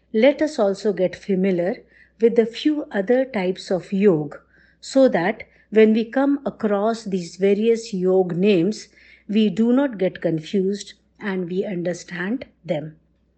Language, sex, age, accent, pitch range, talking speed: English, female, 50-69, Indian, 180-230 Hz, 140 wpm